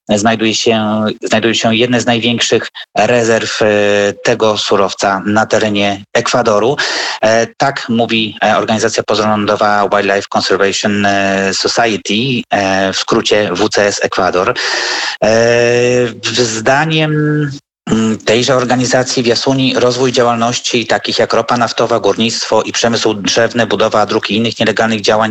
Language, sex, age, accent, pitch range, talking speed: Polish, male, 30-49, native, 105-120 Hz, 115 wpm